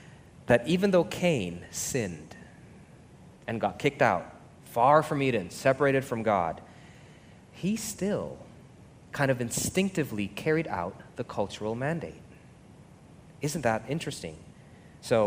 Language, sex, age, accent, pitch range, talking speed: English, male, 30-49, American, 120-165 Hz, 115 wpm